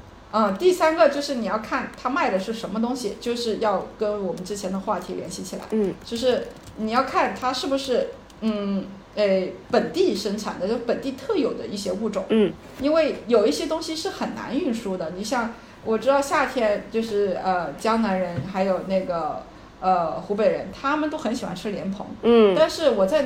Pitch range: 195-270 Hz